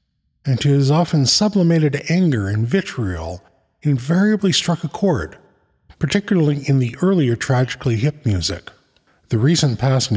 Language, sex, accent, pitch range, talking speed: English, male, American, 115-170 Hz, 130 wpm